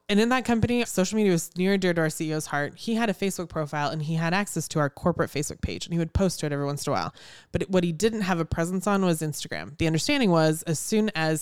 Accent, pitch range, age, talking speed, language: American, 155-190 Hz, 20-39, 290 wpm, English